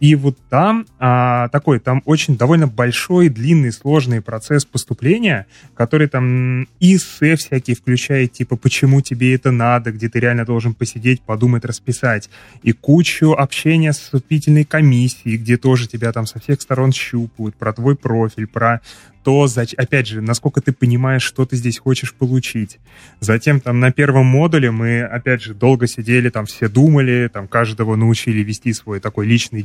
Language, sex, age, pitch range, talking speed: Russian, male, 20-39, 115-135 Hz, 160 wpm